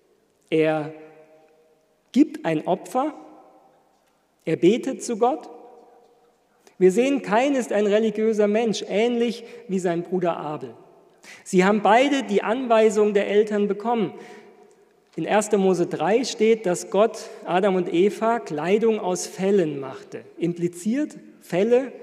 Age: 40-59